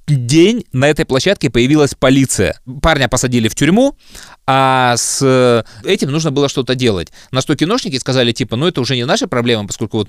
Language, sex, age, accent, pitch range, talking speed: Russian, male, 20-39, native, 110-140 Hz, 180 wpm